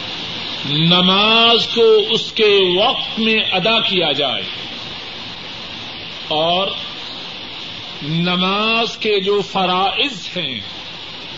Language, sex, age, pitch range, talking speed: Urdu, male, 50-69, 180-225 Hz, 80 wpm